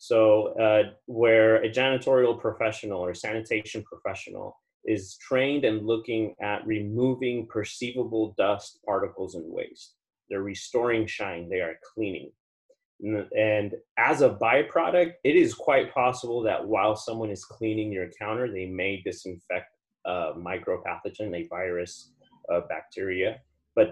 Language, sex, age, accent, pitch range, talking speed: English, male, 30-49, American, 105-125 Hz, 130 wpm